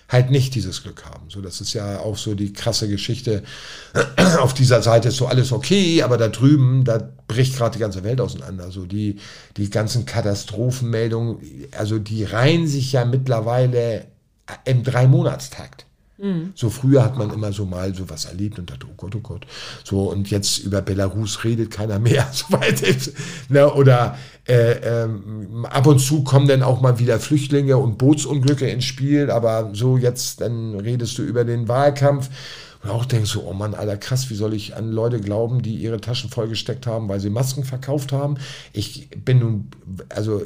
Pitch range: 105-130 Hz